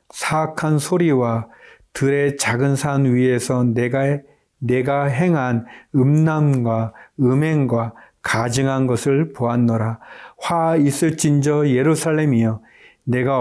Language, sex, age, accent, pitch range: Korean, male, 40-59, native, 125-160 Hz